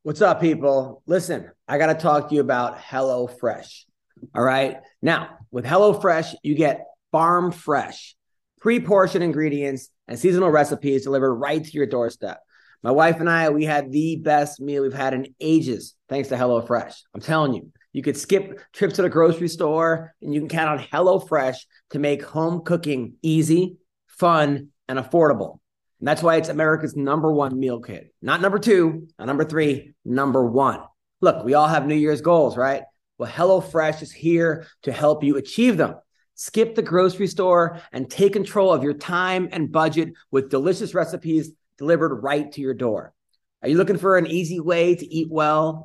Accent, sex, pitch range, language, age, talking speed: American, male, 140-170 Hz, English, 30-49, 180 wpm